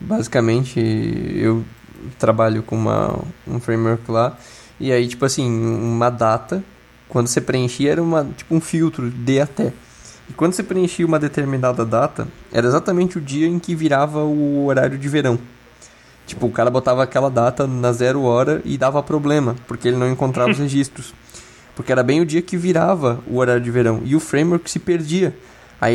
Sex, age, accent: male, 20-39, Brazilian